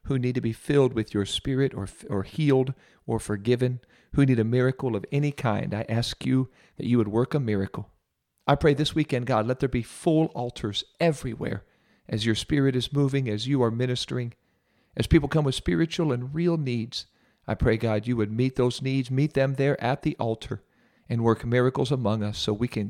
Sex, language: male, English